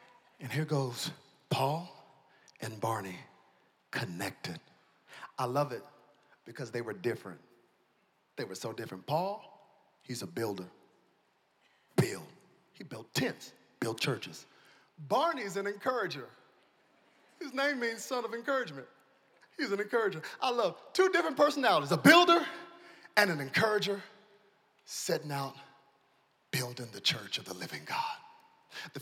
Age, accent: 40-59, American